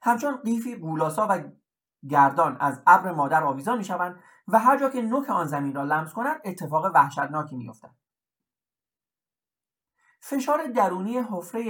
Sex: male